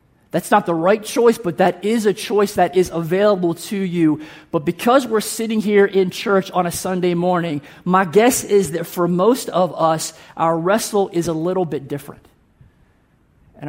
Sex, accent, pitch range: male, American, 150-190 Hz